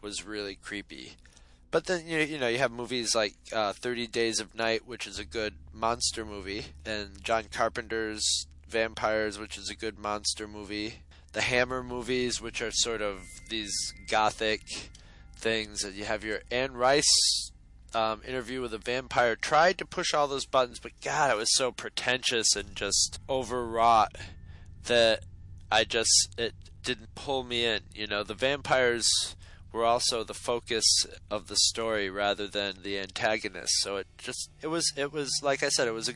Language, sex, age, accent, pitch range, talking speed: English, male, 20-39, American, 95-120 Hz, 175 wpm